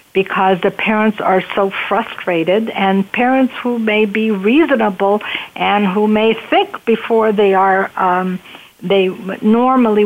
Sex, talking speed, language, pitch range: female, 130 wpm, English, 185-225 Hz